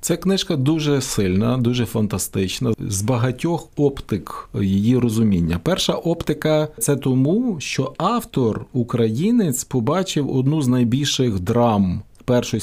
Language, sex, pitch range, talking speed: Ukrainian, male, 110-145 Hz, 120 wpm